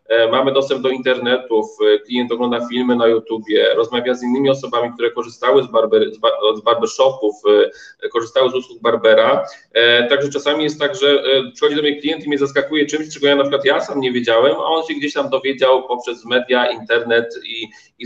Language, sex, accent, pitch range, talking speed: Polish, male, native, 125-150 Hz, 185 wpm